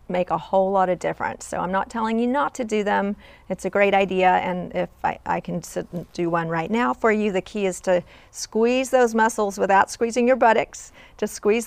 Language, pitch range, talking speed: English, 175-225 Hz, 230 wpm